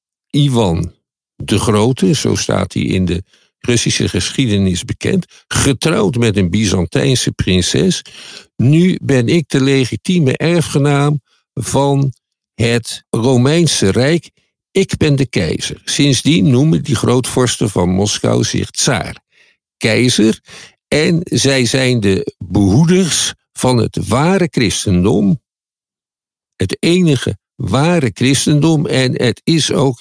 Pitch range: 105-145 Hz